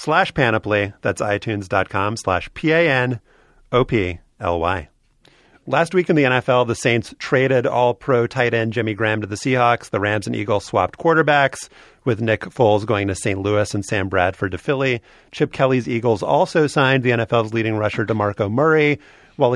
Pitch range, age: 105-130 Hz, 30-49